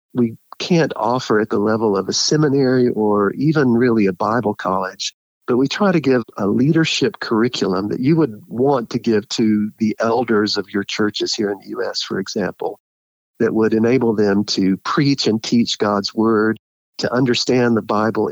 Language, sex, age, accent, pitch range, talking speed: English, male, 50-69, American, 105-125 Hz, 180 wpm